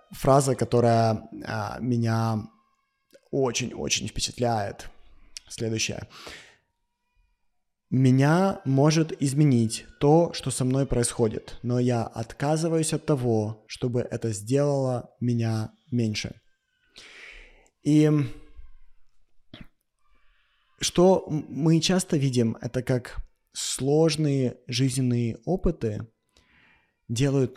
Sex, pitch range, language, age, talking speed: male, 115-145 Hz, Russian, 20-39, 80 wpm